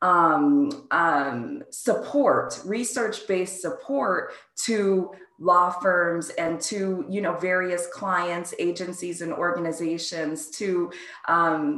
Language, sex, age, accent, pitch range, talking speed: English, female, 20-39, American, 170-195 Hz, 95 wpm